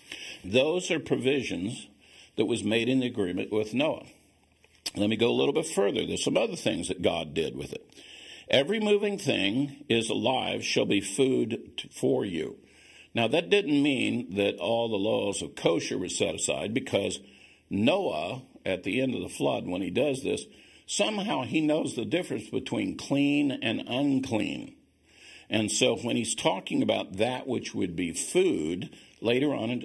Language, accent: English, American